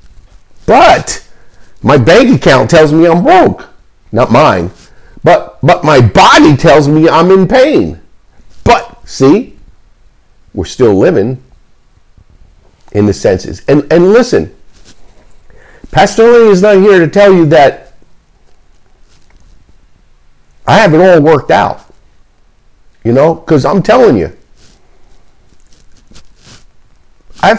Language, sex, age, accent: English, male, 50-69, American